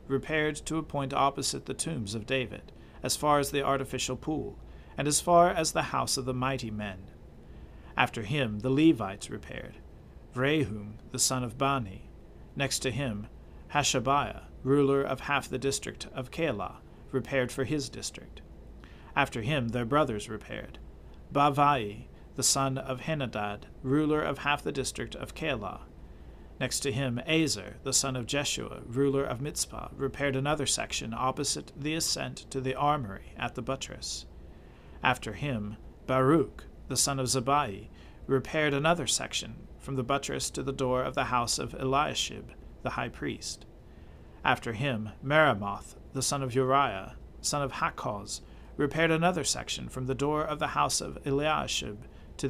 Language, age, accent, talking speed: English, 50-69, American, 155 wpm